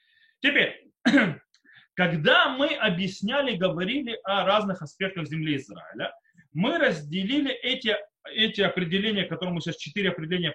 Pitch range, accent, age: 170-230 Hz, native, 30-49